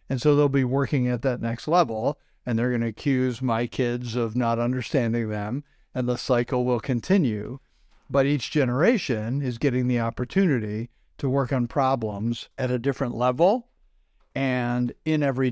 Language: English